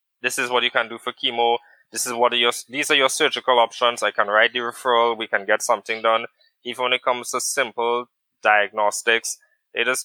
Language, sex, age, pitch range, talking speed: English, male, 20-39, 115-135 Hz, 220 wpm